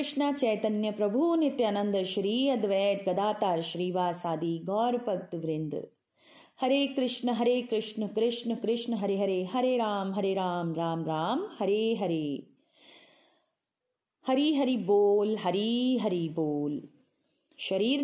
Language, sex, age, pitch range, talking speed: Punjabi, female, 30-49, 180-260 Hz, 115 wpm